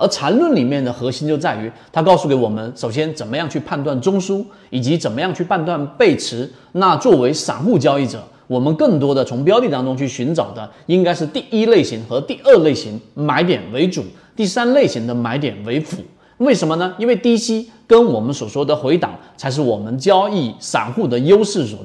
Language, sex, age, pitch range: Chinese, male, 30-49, 120-180 Hz